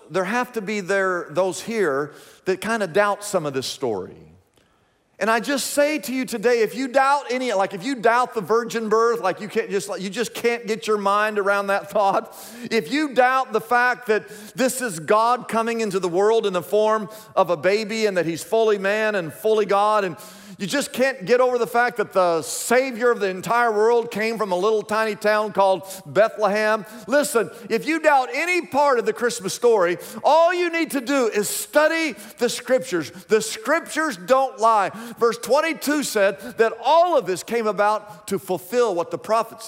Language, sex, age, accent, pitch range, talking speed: English, male, 40-59, American, 200-255 Hz, 205 wpm